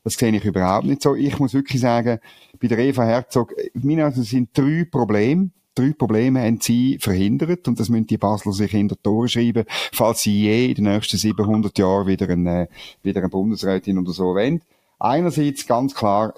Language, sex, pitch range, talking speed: German, male, 105-135 Hz, 195 wpm